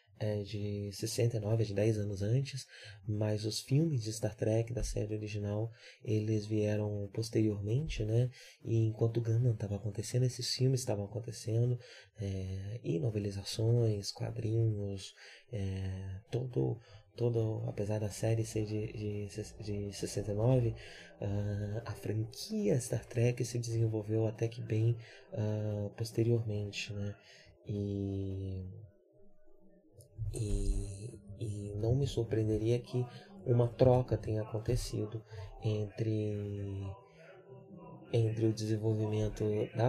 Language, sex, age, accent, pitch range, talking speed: Portuguese, male, 20-39, Brazilian, 105-115 Hz, 110 wpm